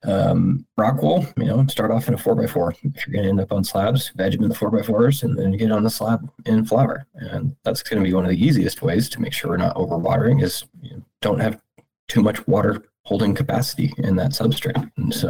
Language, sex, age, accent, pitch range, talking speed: English, male, 20-39, American, 100-135 Hz, 260 wpm